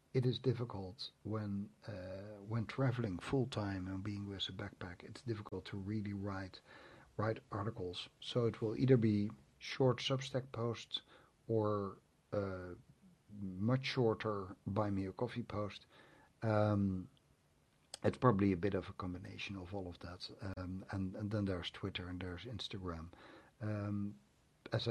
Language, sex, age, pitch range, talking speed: English, male, 60-79, 95-115 Hz, 145 wpm